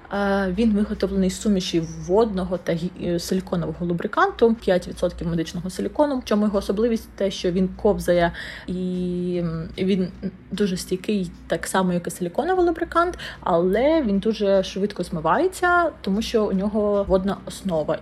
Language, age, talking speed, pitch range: Ukrainian, 20-39, 135 wpm, 180-210 Hz